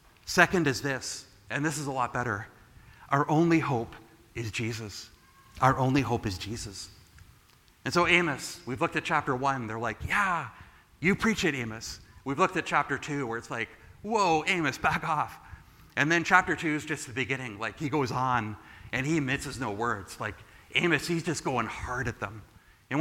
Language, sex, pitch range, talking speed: English, male, 110-155 Hz, 190 wpm